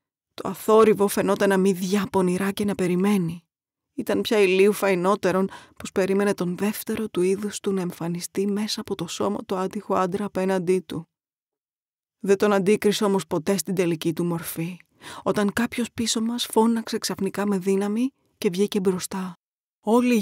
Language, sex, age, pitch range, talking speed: Greek, female, 20-39, 185-220 Hz, 155 wpm